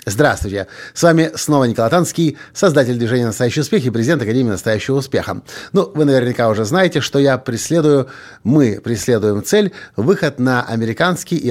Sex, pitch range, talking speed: male, 115-170 Hz, 155 wpm